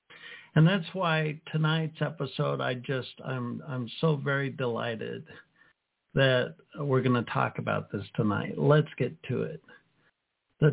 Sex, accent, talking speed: male, American, 140 wpm